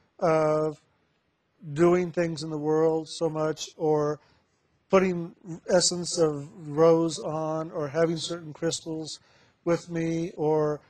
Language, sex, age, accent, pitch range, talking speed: English, male, 50-69, American, 150-170 Hz, 115 wpm